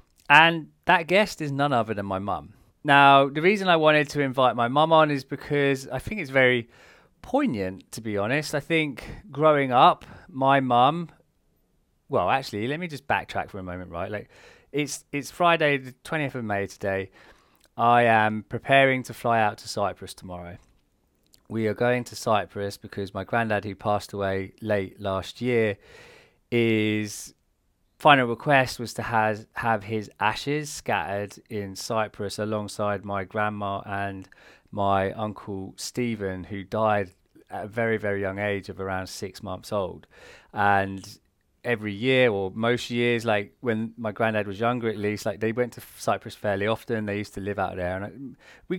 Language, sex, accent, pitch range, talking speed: English, male, British, 100-130 Hz, 170 wpm